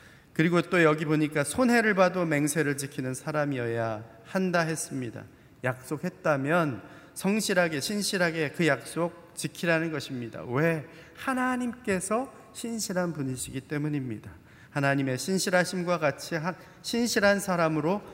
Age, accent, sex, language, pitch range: 40-59, native, male, Korean, 140-180 Hz